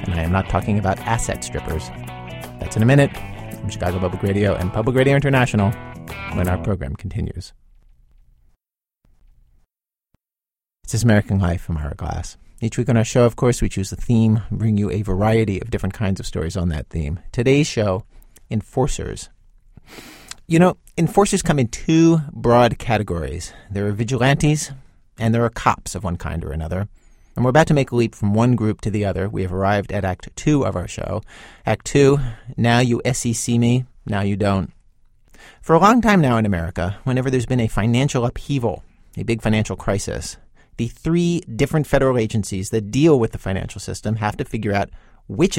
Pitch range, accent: 95-130 Hz, American